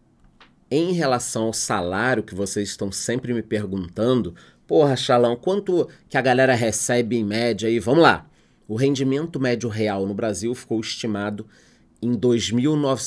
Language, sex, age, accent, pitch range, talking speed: Portuguese, male, 30-49, Brazilian, 105-130 Hz, 140 wpm